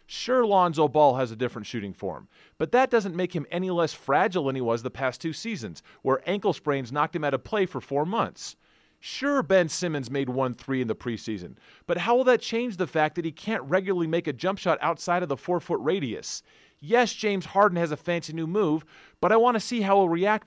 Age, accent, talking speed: 30-49, American, 230 wpm